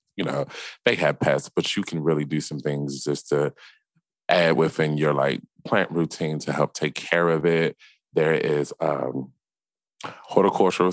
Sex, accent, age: male, American, 30-49